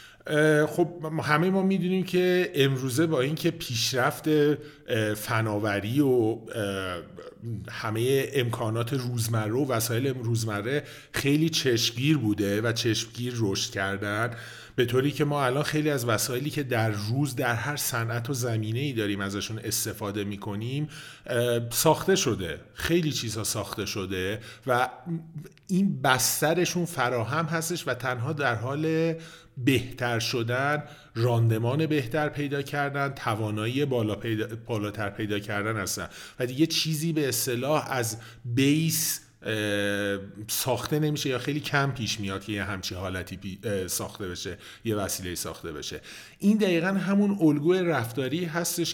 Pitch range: 110-150 Hz